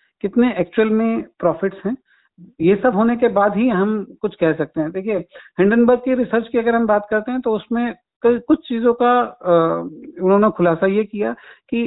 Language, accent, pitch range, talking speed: Hindi, native, 180-230 Hz, 180 wpm